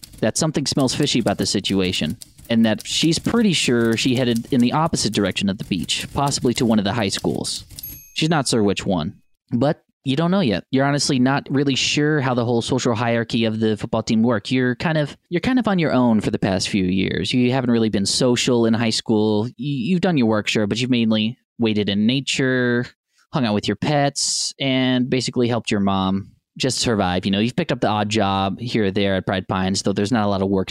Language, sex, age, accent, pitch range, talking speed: English, male, 20-39, American, 105-135 Hz, 235 wpm